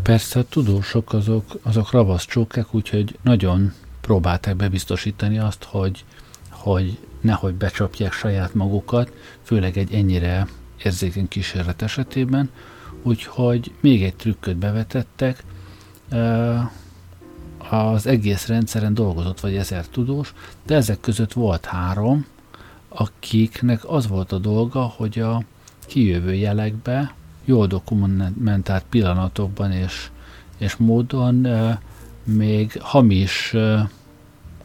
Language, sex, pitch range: Hungarian, male, 95-115 Hz